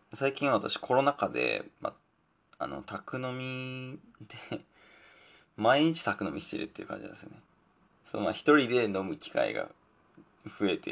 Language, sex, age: Japanese, male, 20-39